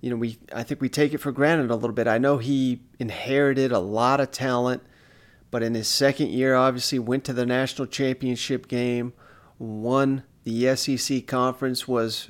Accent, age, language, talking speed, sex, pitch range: American, 30-49, English, 185 wpm, male, 120-135 Hz